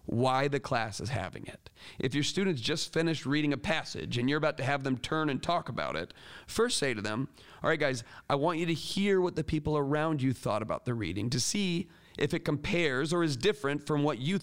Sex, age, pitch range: male, 40-59, 130-170 Hz